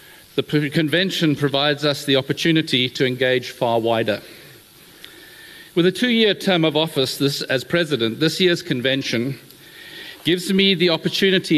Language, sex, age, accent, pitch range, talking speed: English, male, 50-69, South African, 145-180 Hz, 135 wpm